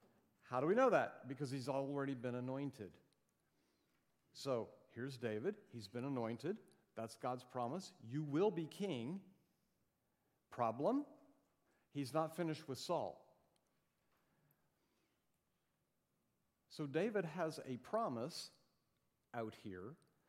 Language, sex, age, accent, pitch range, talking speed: English, male, 50-69, American, 110-150 Hz, 105 wpm